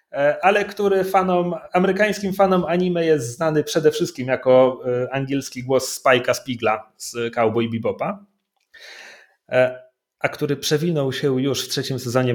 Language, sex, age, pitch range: Polish, male, 30-49, 130-210 Hz